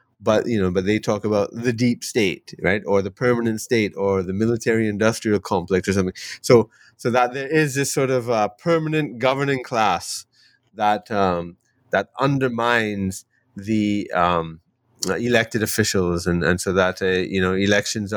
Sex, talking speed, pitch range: male, 160 wpm, 100-125 Hz